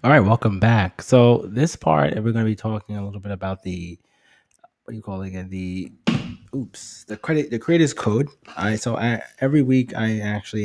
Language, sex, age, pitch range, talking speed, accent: English, male, 20-39, 95-110 Hz, 215 wpm, American